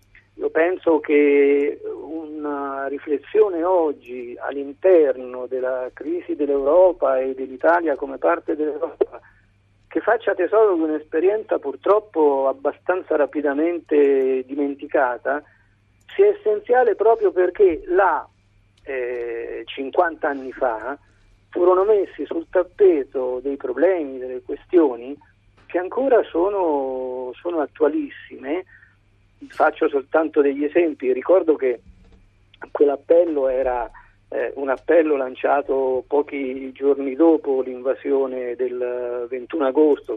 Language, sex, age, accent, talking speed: Italian, male, 50-69, native, 95 wpm